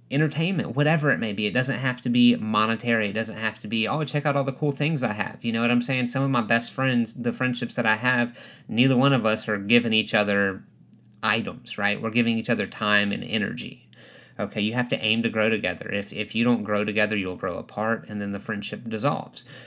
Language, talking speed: English, 240 wpm